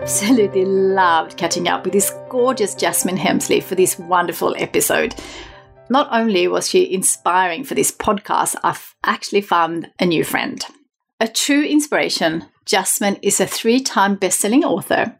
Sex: female